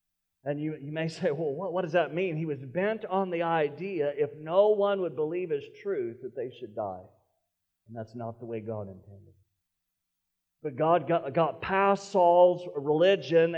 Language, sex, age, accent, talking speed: English, male, 50-69, American, 185 wpm